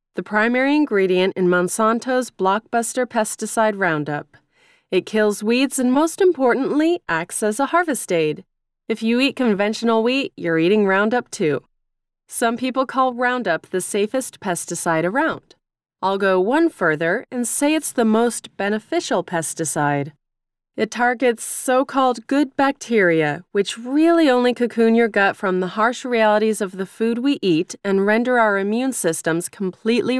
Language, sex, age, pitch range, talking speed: English, female, 30-49, 185-245 Hz, 145 wpm